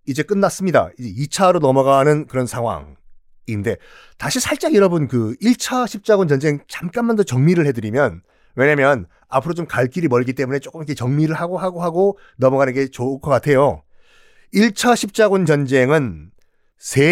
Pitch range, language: 130-205 Hz, Korean